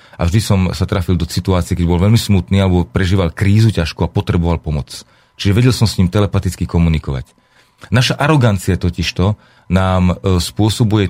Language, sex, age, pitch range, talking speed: Slovak, male, 40-59, 90-115 Hz, 160 wpm